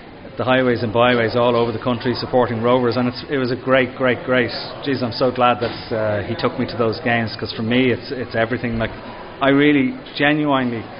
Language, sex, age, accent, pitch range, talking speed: English, male, 30-49, Irish, 110-125 Hz, 220 wpm